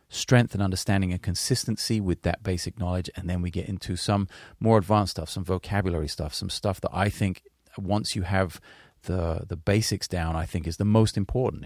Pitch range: 85-105 Hz